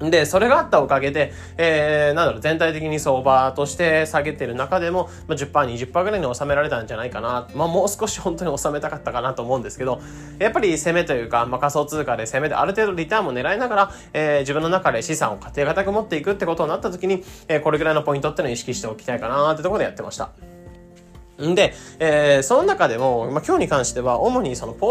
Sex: male